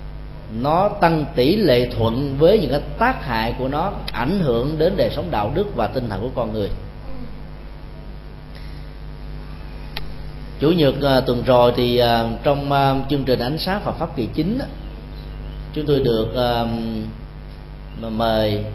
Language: Vietnamese